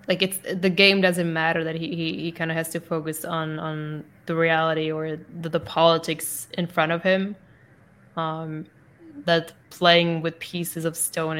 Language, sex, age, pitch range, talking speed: English, female, 10-29, 160-175 Hz, 180 wpm